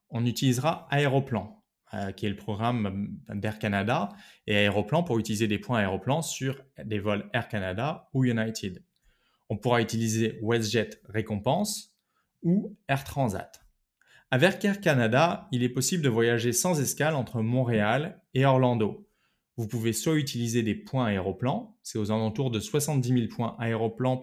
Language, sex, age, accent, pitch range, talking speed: French, male, 20-39, French, 110-140 Hz, 150 wpm